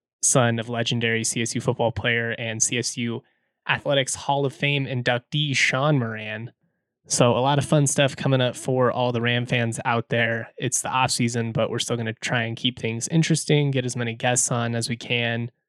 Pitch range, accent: 115-140 Hz, American